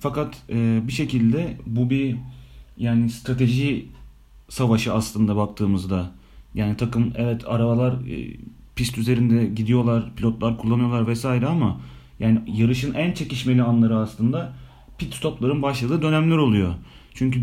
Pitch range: 115-135 Hz